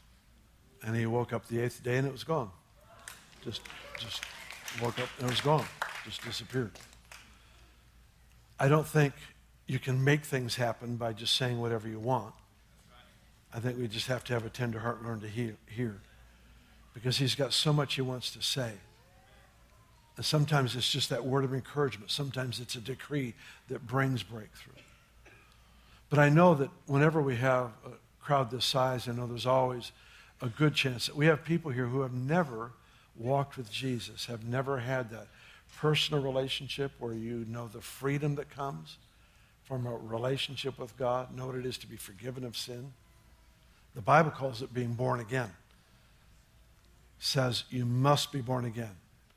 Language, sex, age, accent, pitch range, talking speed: Portuguese, male, 60-79, American, 115-135 Hz, 175 wpm